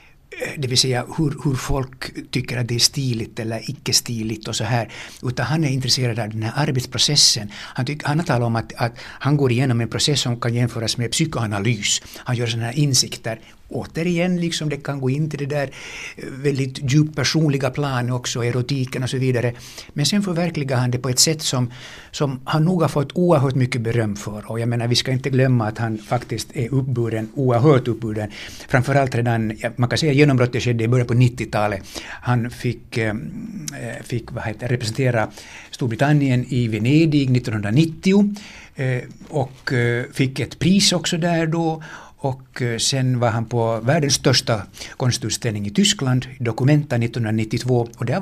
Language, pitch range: Swedish, 120-155 Hz